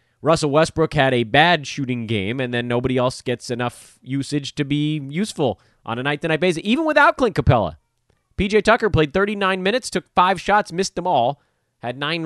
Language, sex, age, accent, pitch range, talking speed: English, male, 30-49, American, 115-165 Hz, 185 wpm